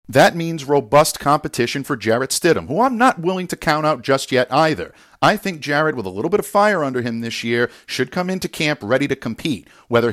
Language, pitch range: English, 115-155 Hz